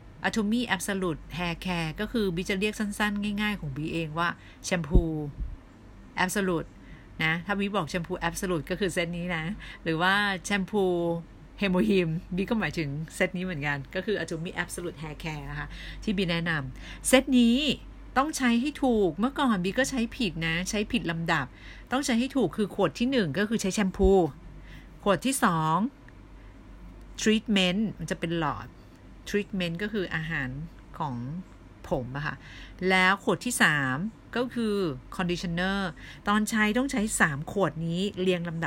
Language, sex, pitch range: Thai, female, 160-205 Hz